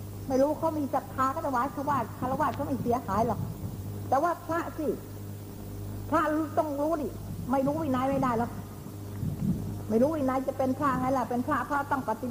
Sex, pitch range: female, 175-265 Hz